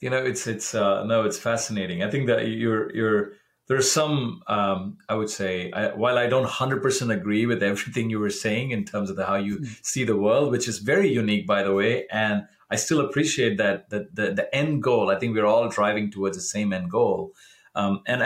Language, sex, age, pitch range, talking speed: English, male, 30-49, 100-130 Hz, 225 wpm